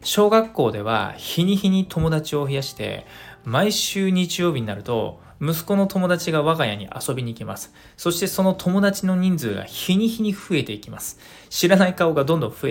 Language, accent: Japanese, native